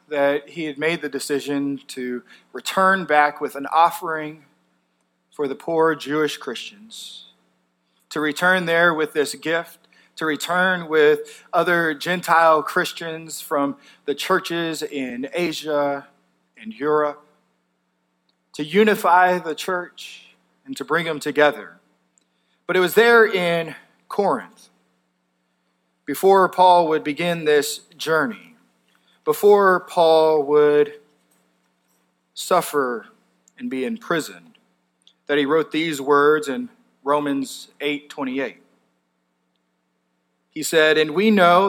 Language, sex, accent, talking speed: English, male, American, 110 wpm